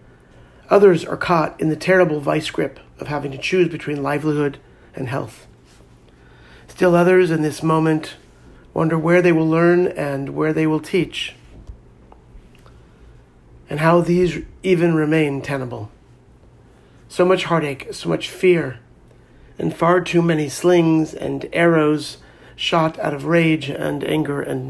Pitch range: 140-175 Hz